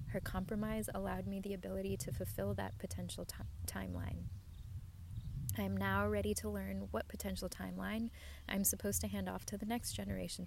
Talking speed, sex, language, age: 165 wpm, female, English, 20-39